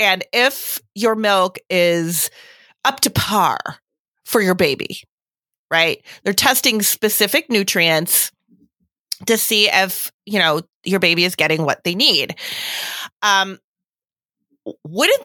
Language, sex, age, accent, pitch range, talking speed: English, female, 30-49, American, 175-230 Hz, 120 wpm